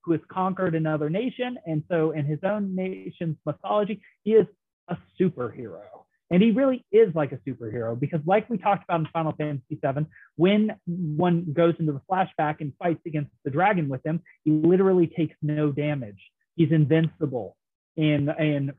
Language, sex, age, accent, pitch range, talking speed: English, male, 30-49, American, 150-185 Hz, 170 wpm